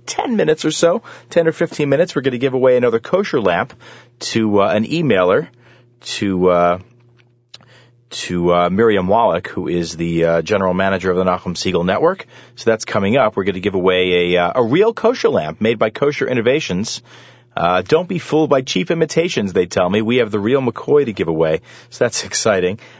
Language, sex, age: English, male, 30-49